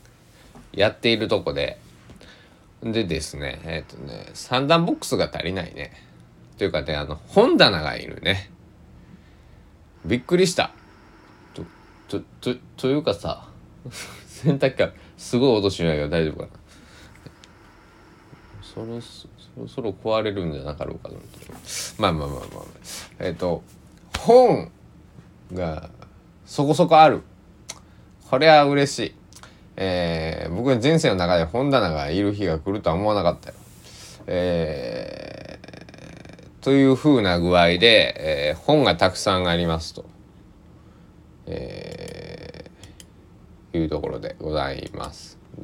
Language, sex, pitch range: Japanese, male, 80-120 Hz